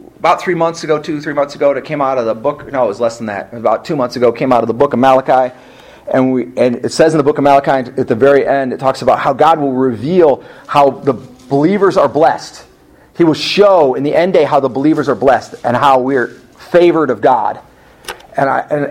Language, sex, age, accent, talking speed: English, male, 40-59, American, 240 wpm